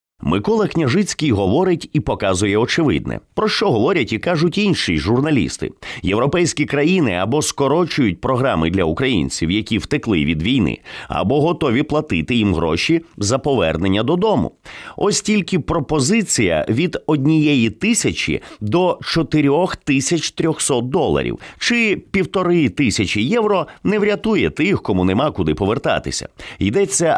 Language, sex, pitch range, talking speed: English, male, 105-165 Hz, 120 wpm